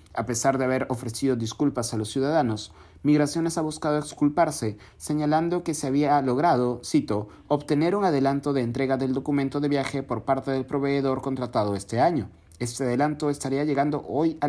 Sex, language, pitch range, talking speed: male, Spanish, 110-145 Hz, 170 wpm